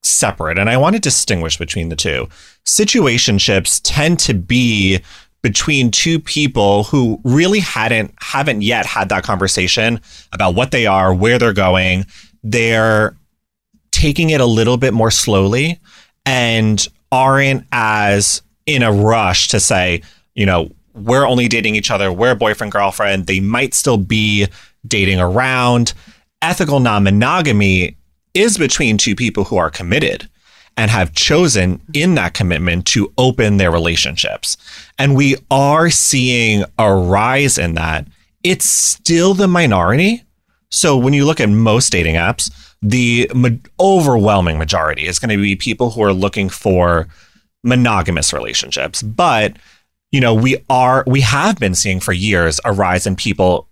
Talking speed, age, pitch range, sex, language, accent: 145 wpm, 30-49, 95-130 Hz, male, English, American